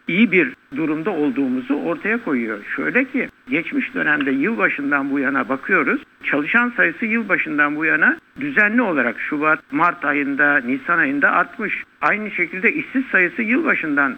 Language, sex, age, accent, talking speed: Turkish, male, 60-79, native, 135 wpm